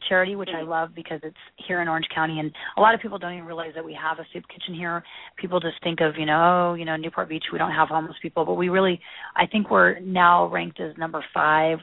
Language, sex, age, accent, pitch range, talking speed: English, female, 30-49, American, 150-175 Hz, 260 wpm